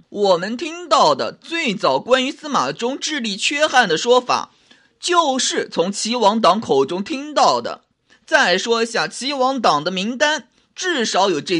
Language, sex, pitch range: Chinese, male, 220-305 Hz